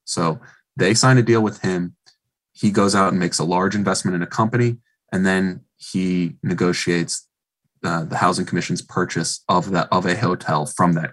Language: English